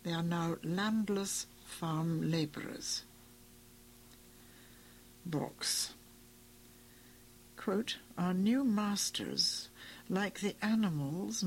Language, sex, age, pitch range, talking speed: English, female, 60-79, 150-215 Hz, 70 wpm